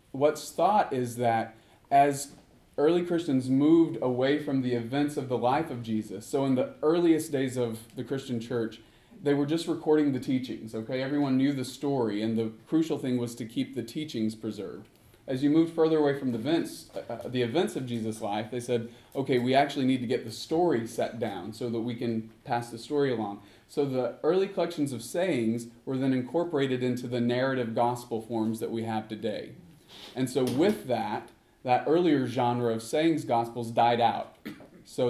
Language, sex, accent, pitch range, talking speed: English, male, American, 115-145 Hz, 190 wpm